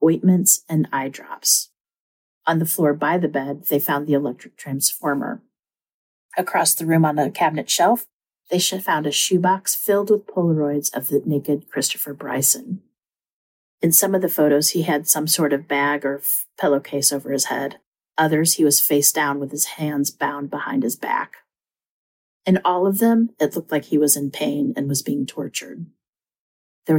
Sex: female